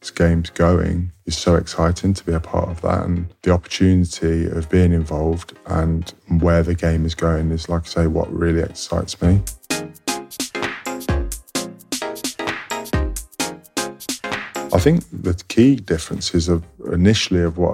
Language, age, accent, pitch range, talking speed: English, 20-39, British, 80-90 Hz, 140 wpm